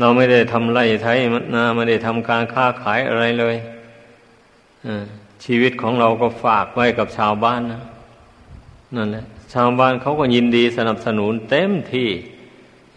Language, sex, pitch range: Thai, male, 110-120 Hz